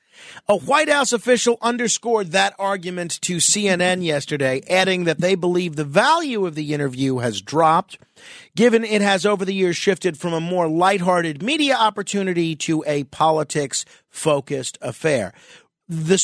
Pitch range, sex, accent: 145-200 Hz, male, American